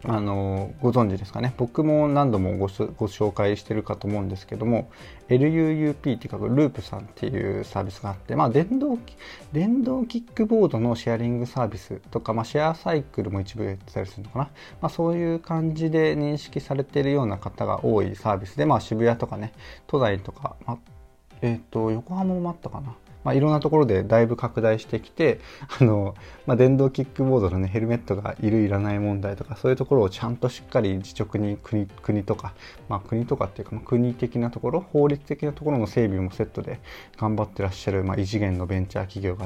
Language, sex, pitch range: Japanese, male, 105-145 Hz